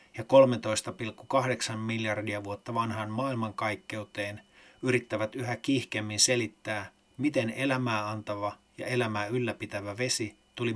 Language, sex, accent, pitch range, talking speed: Finnish, male, native, 110-125 Hz, 100 wpm